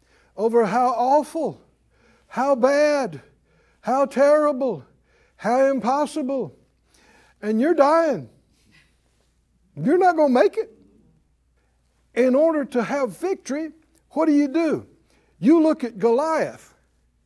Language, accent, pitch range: English, American, 210-335 Hz